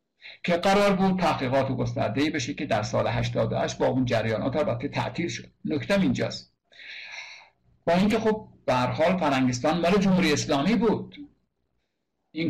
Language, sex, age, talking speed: Persian, male, 60-79, 145 wpm